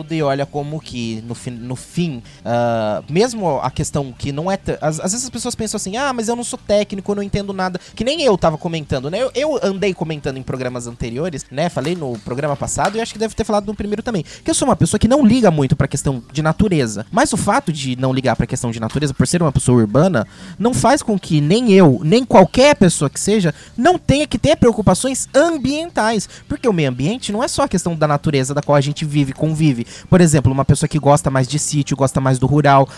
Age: 20-39